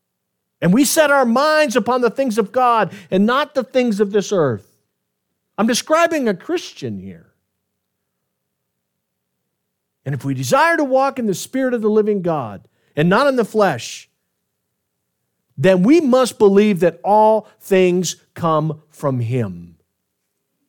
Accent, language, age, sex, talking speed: American, English, 50-69, male, 145 wpm